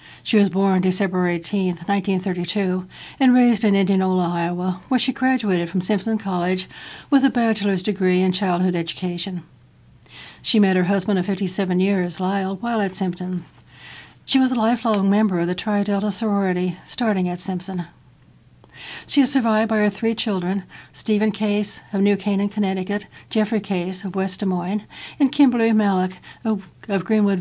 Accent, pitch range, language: American, 185-215 Hz, English